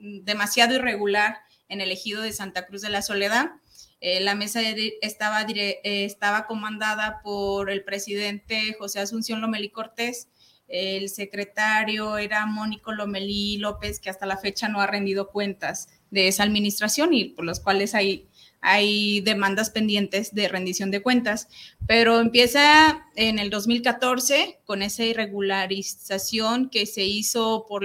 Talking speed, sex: 145 wpm, female